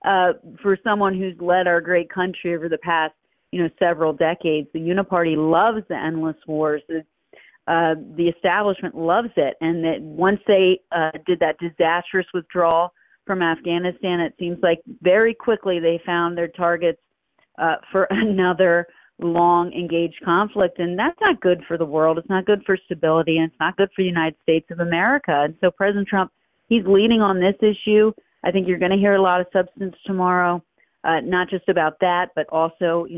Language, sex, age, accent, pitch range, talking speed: English, female, 40-59, American, 165-190 Hz, 185 wpm